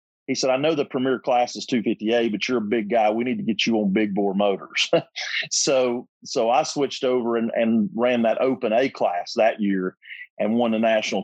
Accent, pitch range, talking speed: American, 100-120 Hz, 230 wpm